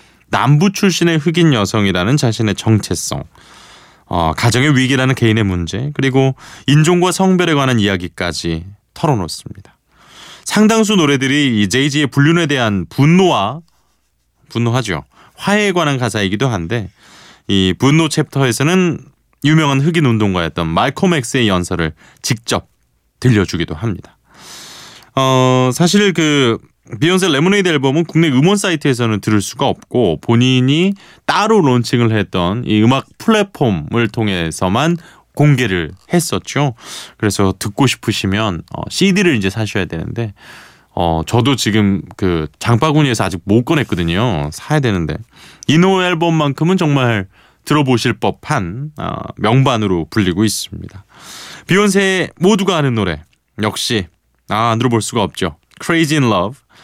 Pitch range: 100-150 Hz